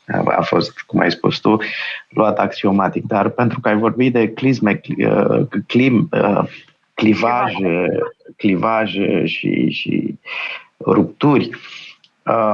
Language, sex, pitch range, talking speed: Romanian, male, 105-130 Hz, 95 wpm